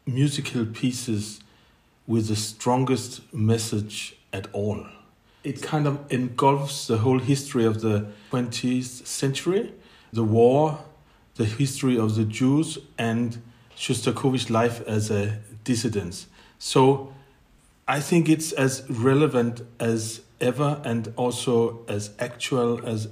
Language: English